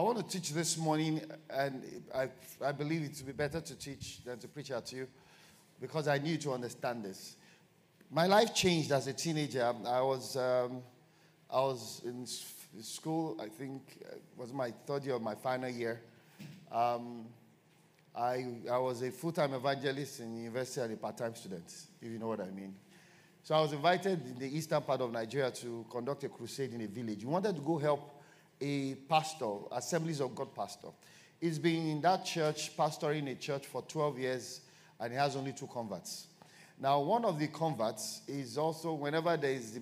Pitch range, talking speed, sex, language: 125-160 Hz, 195 wpm, male, English